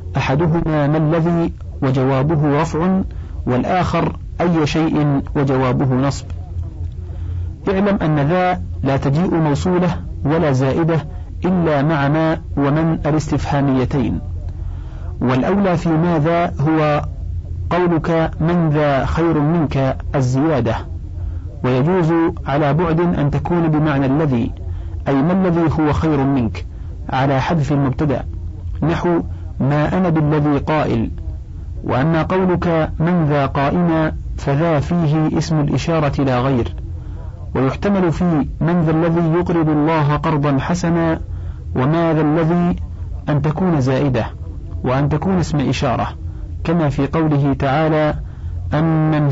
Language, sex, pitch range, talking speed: Arabic, male, 100-160 Hz, 110 wpm